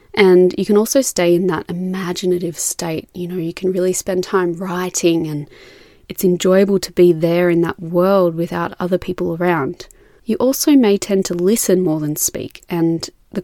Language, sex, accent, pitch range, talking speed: English, female, Australian, 170-215 Hz, 185 wpm